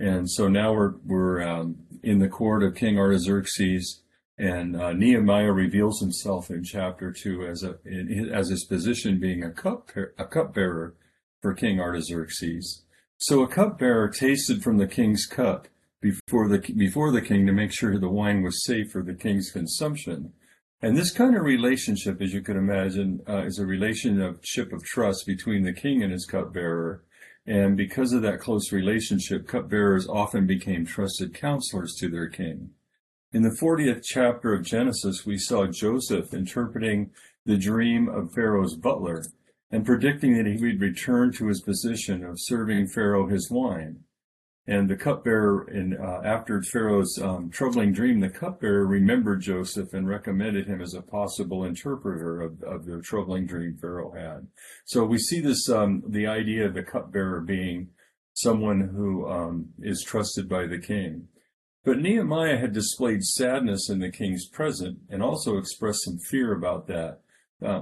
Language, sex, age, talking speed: English, male, 50-69, 165 wpm